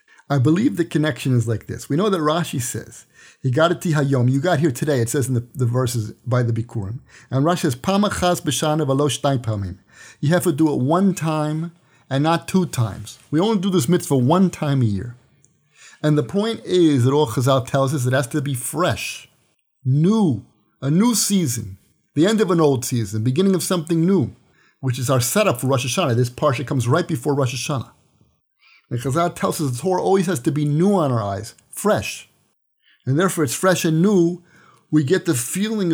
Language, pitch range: English, 130-185 Hz